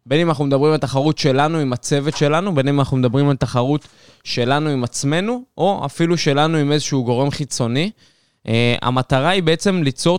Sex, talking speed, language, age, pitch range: male, 185 wpm, Hebrew, 20-39, 130-165 Hz